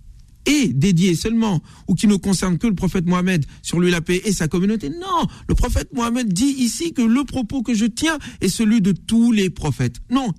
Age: 50-69